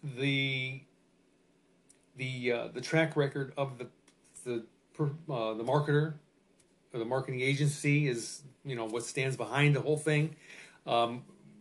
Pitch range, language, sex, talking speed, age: 115-145 Hz, English, male, 135 wpm, 40-59